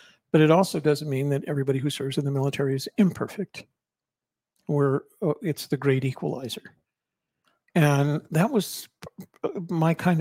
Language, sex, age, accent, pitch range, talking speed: English, male, 60-79, American, 135-160 Hz, 140 wpm